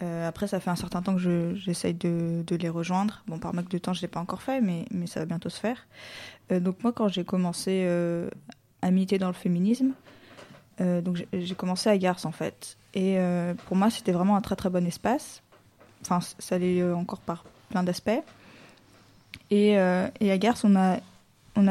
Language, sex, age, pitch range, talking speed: French, female, 20-39, 180-205 Hz, 215 wpm